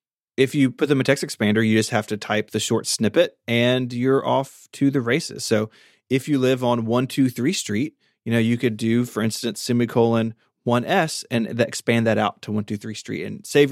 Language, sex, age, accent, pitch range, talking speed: English, male, 30-49, American, 110-130 Hz, 195 wpm